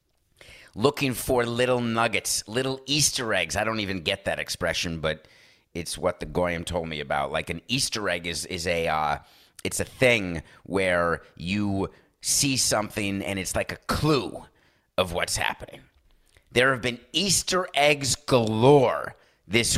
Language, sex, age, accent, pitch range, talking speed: English, male, 30-49, American, 85-115 Hz, 155 wpm